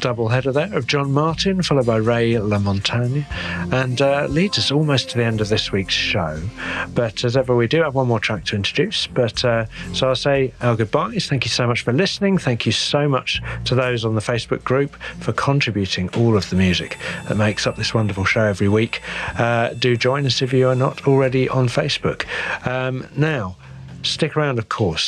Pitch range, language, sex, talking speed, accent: 105-135 Hz, English, male, 210 wpm, British